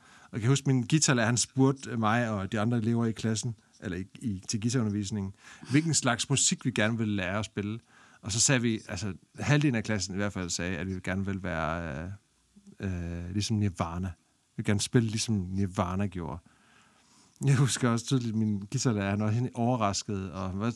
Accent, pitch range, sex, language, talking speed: native, 105-135 Hz, male, Danish, 200 wpm